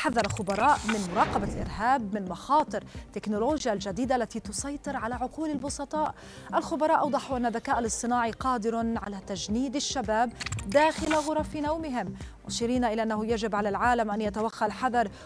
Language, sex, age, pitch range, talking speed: Arabic, female, 30-49, 215-275 Hz, 140 wpm